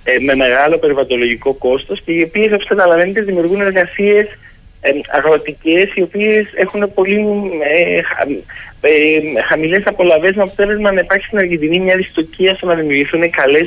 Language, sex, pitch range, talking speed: Greek, male, 130-170 Hz, 125 wpm